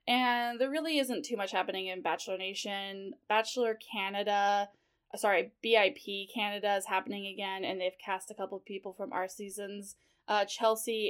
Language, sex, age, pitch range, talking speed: English, female, 20-39, 195-235 Hz, 160 wpm